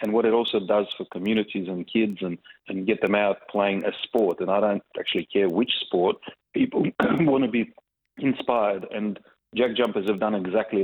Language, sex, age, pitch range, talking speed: English, male, 30-49, 100-105 Hz, 195 wpm